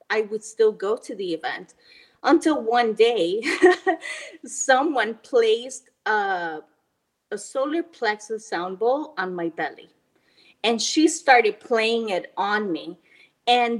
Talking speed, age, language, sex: 125 wpm, 20-39, English, female